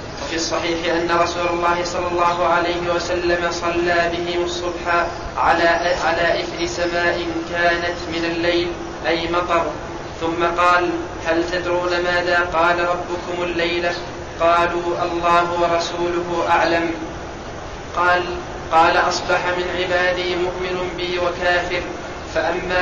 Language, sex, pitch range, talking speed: Arabic, male, 175-185 Hz, 110 wpm